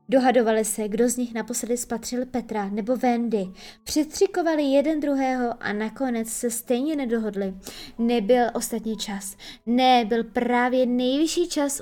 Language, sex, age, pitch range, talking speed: Czech, female, 20-39, 220-260 Hz, 130 wpm